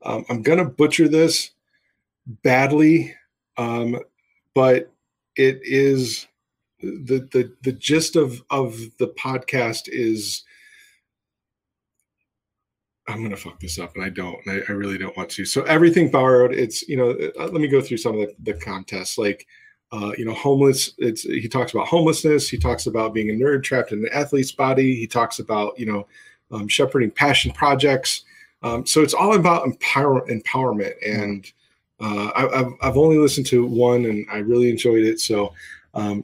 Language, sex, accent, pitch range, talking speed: English, male, American, 105-140 Hz, 170 wpm